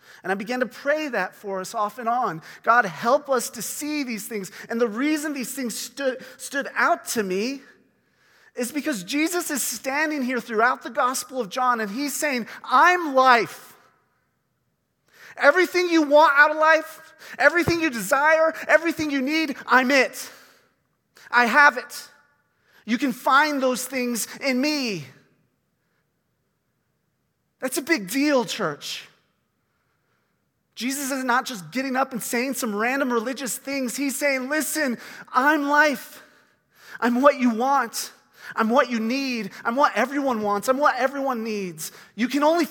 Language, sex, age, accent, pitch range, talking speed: English, male, 30-49, American, 235-290 Hz, 155 wpm